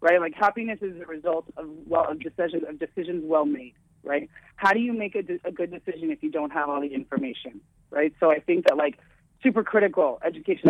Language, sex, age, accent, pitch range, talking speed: Spanish, female, 30-49, American, 160-220 Hz, 225 wpm